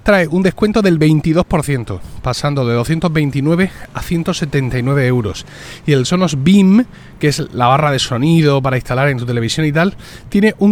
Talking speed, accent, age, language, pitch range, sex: 170 wpm, Spanish, 30-49, Spanish, 115-170 Hz, male